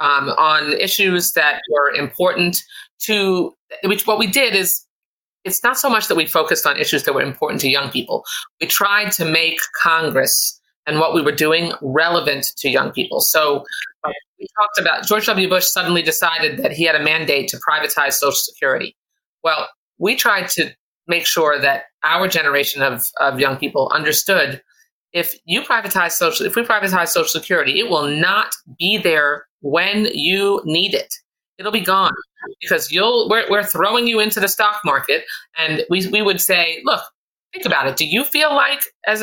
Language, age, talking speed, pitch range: English, 30-49, 180 wpm, 165-240 Hz